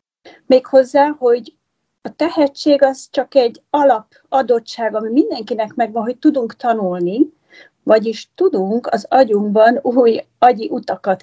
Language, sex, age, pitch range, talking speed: Hungarian, female, 40-59, 205-265 Hz, 110 wpm